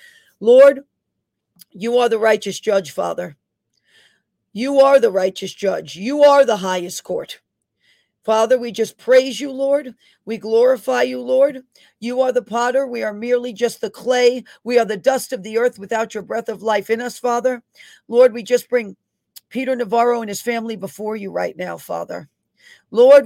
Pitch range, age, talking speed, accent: 195-250 Hz, 40-59, 175 wpm, American